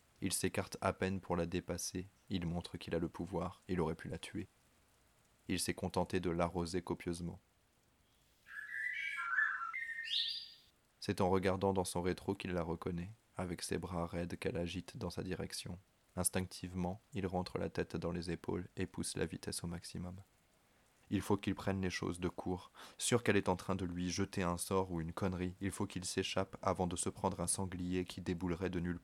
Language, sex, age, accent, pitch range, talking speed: French, male, 20-39, French, 90-100 Hz, 190 wpm